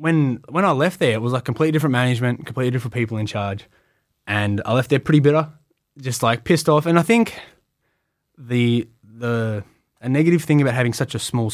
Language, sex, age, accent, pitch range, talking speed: English, male, 20-39, Australian, 115-150 Hz, 205 wpm